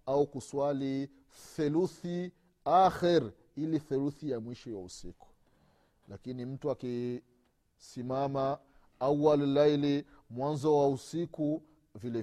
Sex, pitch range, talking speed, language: male, 115-155 Hz, 100 wpm, Swahili